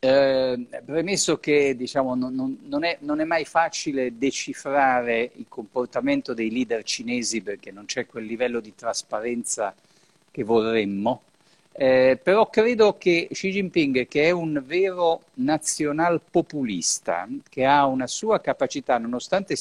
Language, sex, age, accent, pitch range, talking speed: Italian, male, 50-69, native, 125-175 Hz, 140 wpm